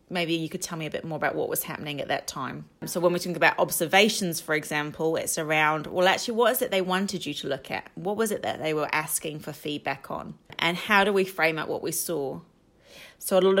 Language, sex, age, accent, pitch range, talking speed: English, female, 30-49, British, 160-195 Hz, 255 wpm